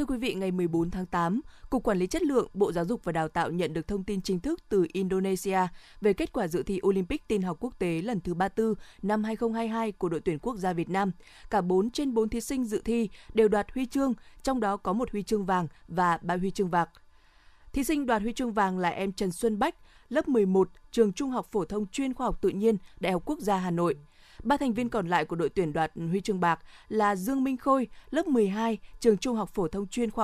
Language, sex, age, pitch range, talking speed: Vietnamese, female, 20-39, 185-240 Hz, 250 wpm